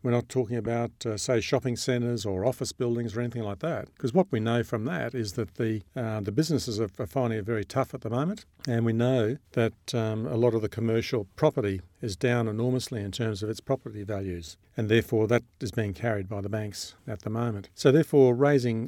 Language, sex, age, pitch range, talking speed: English, male, 50-69, 105-125 Hz, 225 wpm